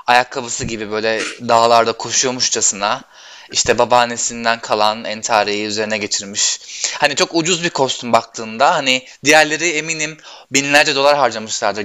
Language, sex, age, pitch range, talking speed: Turkish, male, 20-39, 120-150 Hz, 115 wpm